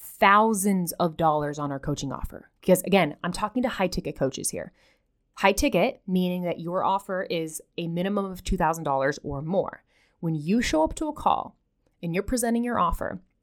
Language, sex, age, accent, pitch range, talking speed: English, female, 20-39, American, 170-230 Hz, 185 wpm